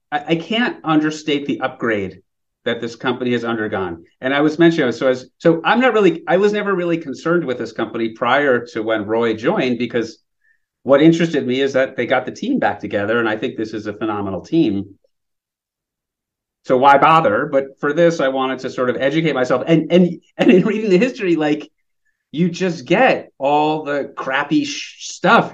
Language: English